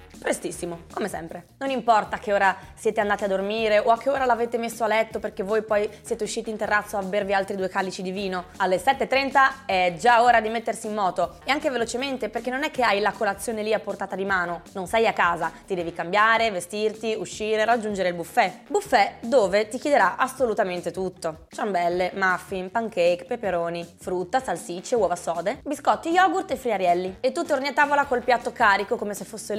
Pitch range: 195-250 Hz